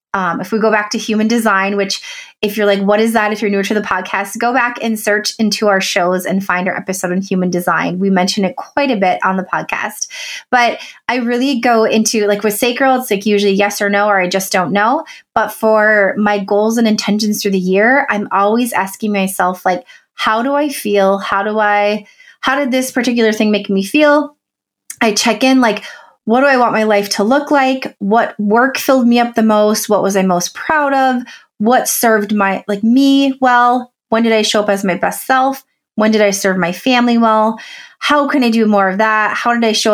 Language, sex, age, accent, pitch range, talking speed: English, female, 30-49, American, 200-240 Hz, 225 wpm